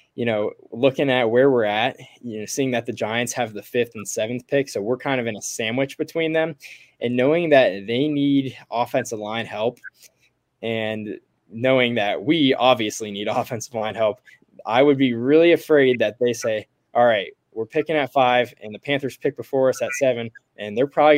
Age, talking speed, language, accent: 20-39, 200 wpm, English, American